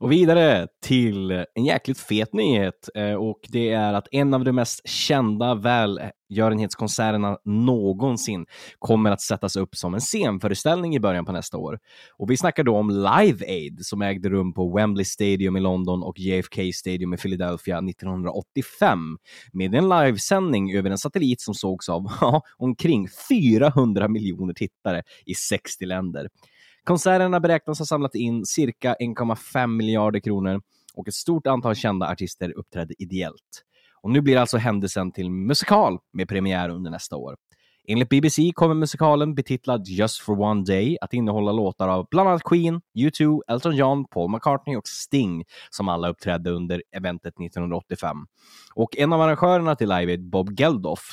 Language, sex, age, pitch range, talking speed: Swedish, male, 20-39, 95-135 Hz, 155 wpm